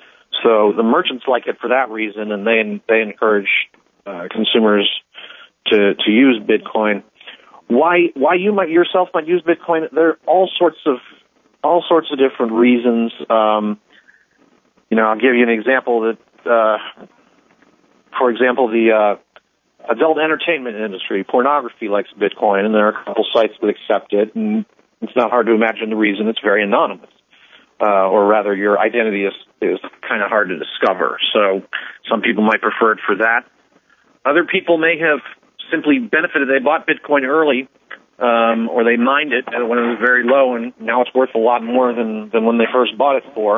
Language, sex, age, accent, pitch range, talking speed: English, male, 40-59, American, 110-140 Hz, 180 wpm